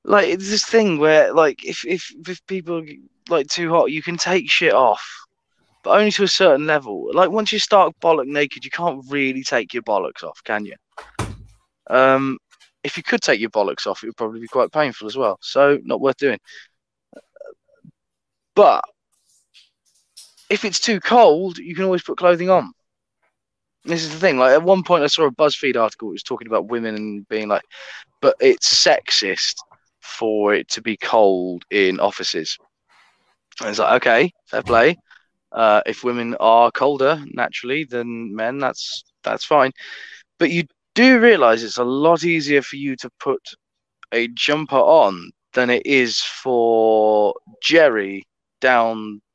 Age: 20-39